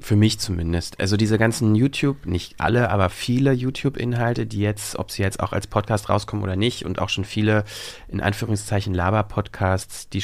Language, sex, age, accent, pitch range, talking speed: German, male, 30-49, German, 95-110 Hz, 180 wpm